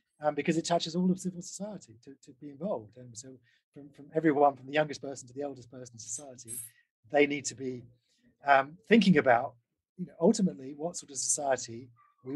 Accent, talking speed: British, 205 wpm